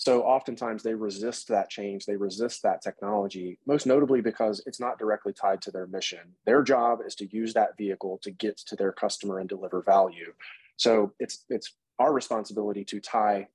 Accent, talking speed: American, 185 wpm